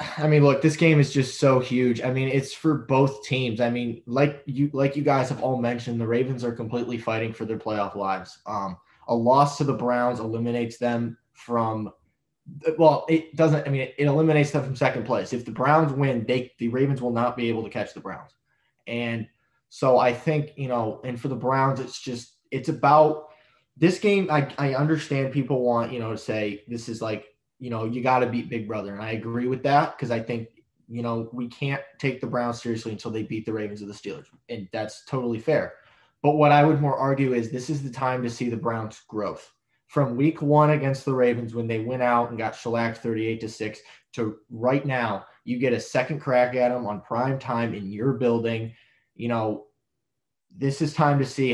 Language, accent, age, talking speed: English, American, 20-39, 220 wpm